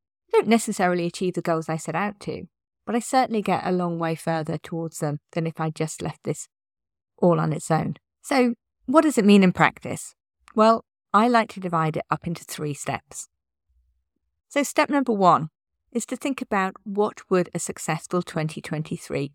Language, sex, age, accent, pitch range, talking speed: English, female, 40-59, British, 150-220 Hz, 185 wpm